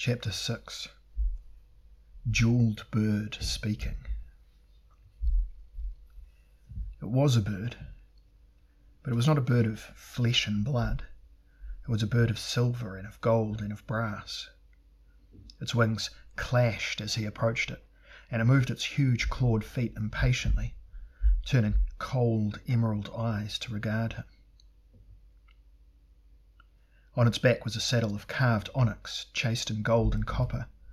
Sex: male